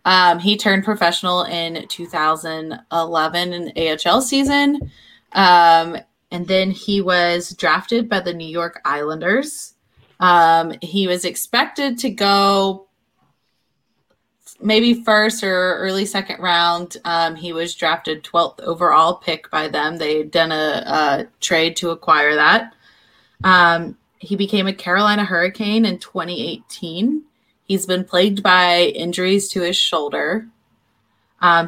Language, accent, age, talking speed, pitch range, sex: English, American, 20-39, 125 wpm, 165-200 Hz, female